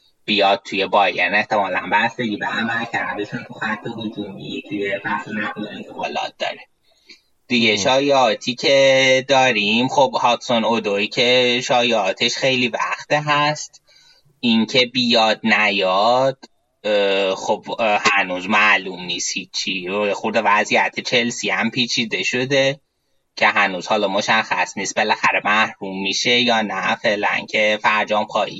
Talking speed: 110 wpm